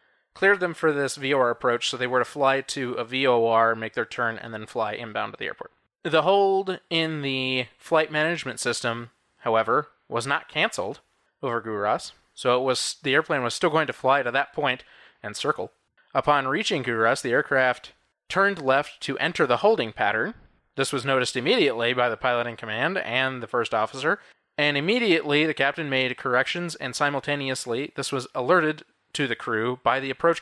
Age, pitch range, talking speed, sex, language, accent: 20-39, 125-155 Hz, 185 wpm, male, English, American